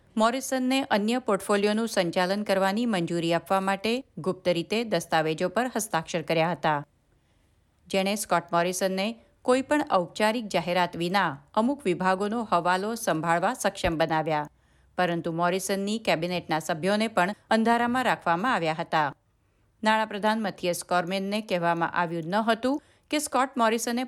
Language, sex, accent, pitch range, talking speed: Gujarati, female, native, 175-225 Hz, 100 wpm